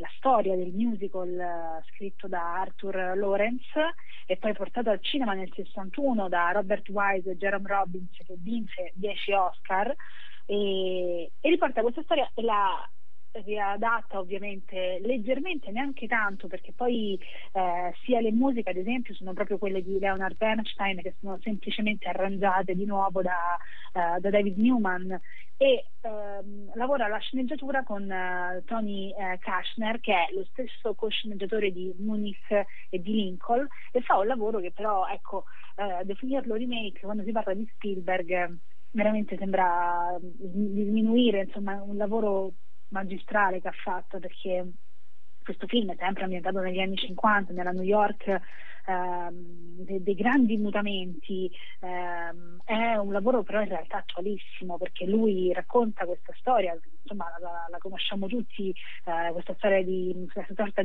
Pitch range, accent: 185-220 Hz, native